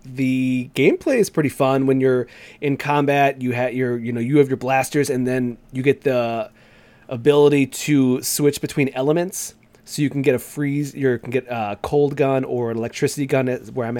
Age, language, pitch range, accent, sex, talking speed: 30-49, English, 115-135 Hz, American, male, 195 wpm